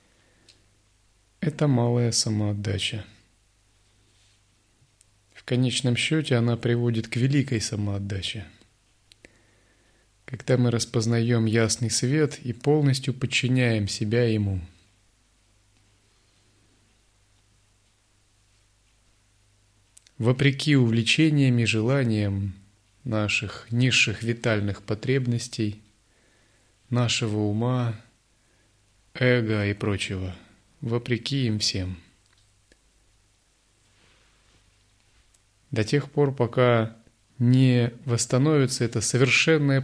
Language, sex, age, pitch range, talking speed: Russian, male, 30-49, 100-120 Hz, 70 wpm